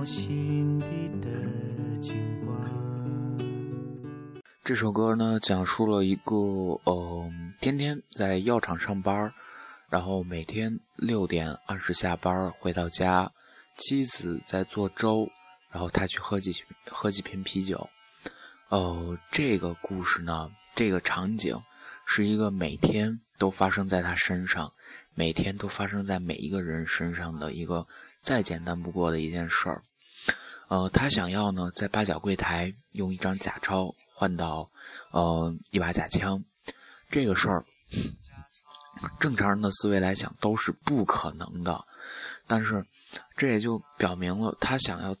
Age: 20-39